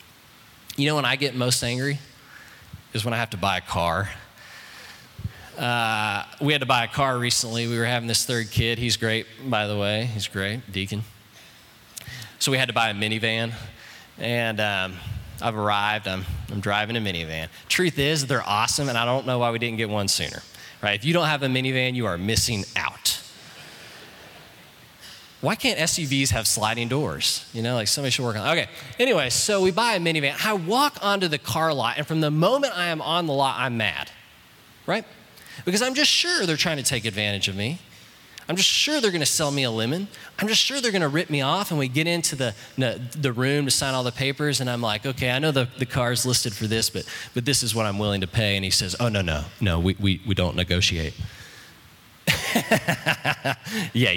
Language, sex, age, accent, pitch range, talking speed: English, male, 20-39, American, 105-145 Hz, 215 wpm